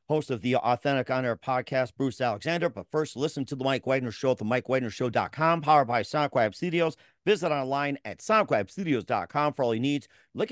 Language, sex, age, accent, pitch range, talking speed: English, male, 50-69, American, 120-155 Hz, 195 wpm